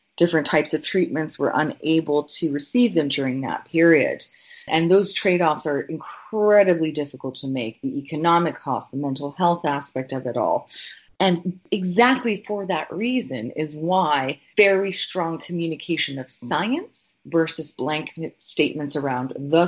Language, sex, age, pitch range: English, female, 30-49, 145-195 Hz